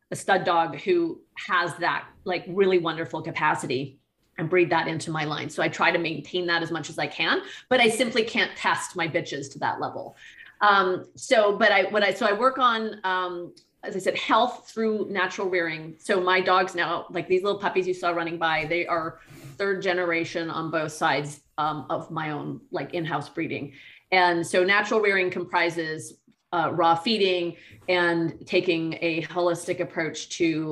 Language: English